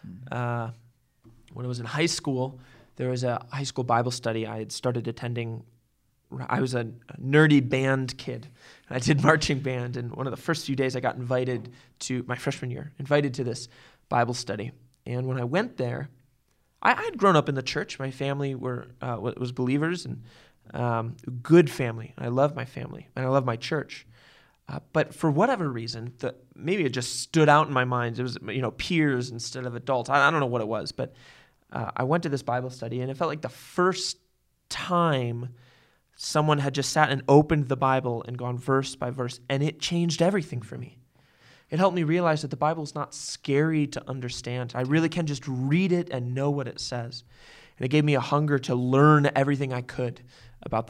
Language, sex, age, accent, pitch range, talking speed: English, male, 20-39, American, 125-145 Hz, 210 wpm